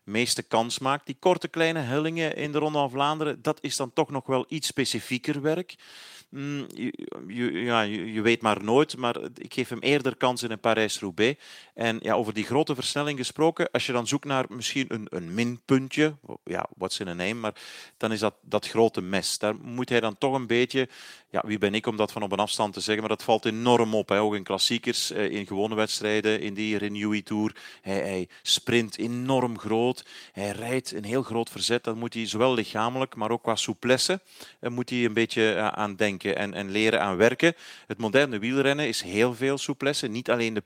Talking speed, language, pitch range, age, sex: 210 wpm, Dutch, 110-130 Hz, 40-59, male